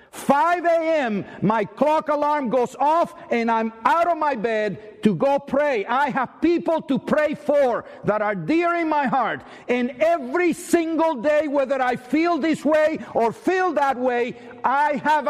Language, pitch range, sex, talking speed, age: English, 180-280 Hz, male, 170 wpm, 50-69